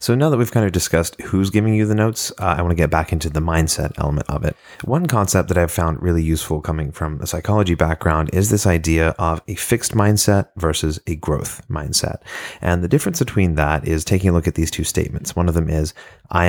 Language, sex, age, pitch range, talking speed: English, male, 30-49, 80-95 Hz, 235 wpm